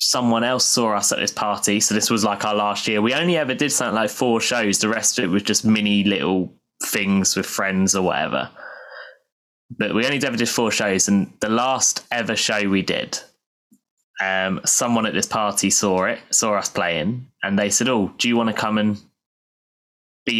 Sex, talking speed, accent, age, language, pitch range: male, 205 wpm, British, 10-29, English, 105-150 Hz